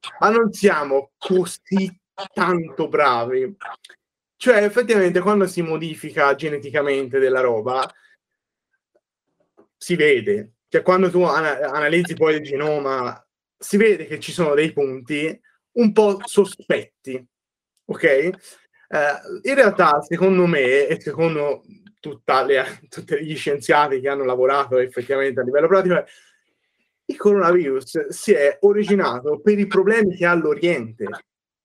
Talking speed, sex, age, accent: 120 wpm, male, 30-49, native